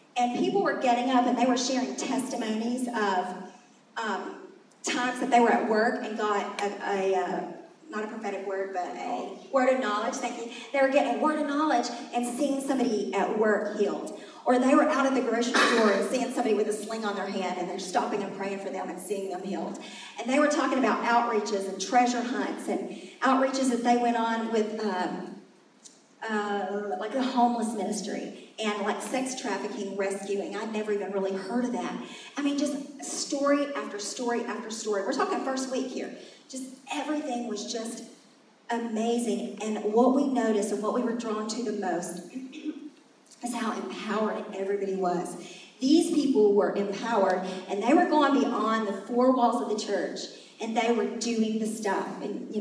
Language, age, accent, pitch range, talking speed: English, 40-59, American, 200-250 Hz, 190 wpm